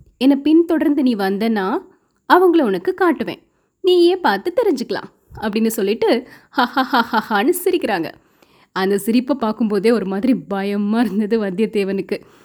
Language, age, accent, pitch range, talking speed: Tamil, 20-39, native, 215-295 Hz, 110 wpm